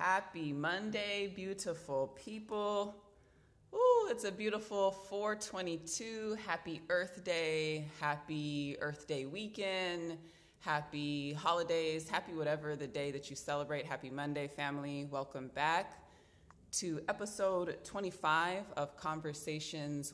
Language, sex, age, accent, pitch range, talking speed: English, female, 20-39, American, 135-170 Hz, 105 wpm